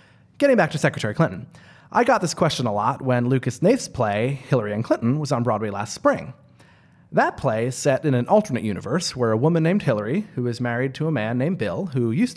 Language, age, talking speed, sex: English, 30-49, 225 wpm, male